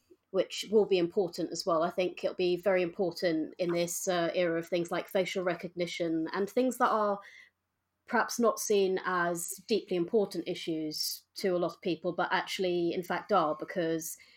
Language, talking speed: English, 180 wpm